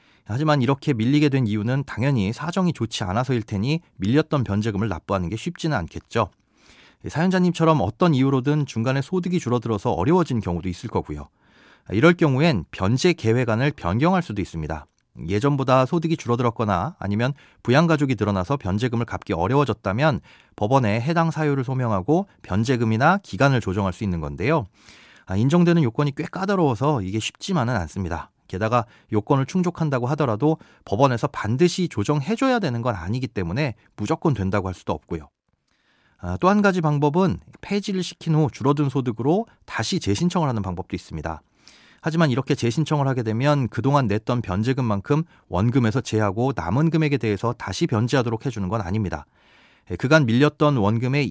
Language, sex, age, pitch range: Korean, male, 30-49, 105-155 Hz